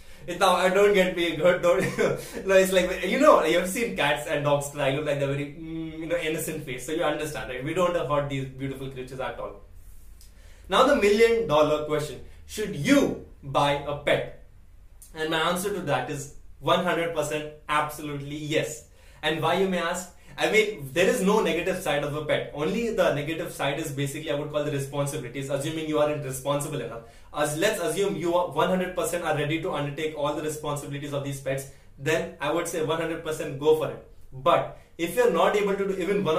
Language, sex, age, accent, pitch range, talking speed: English, male, 20-39, Indian, 140-170 Hz, 205 wpm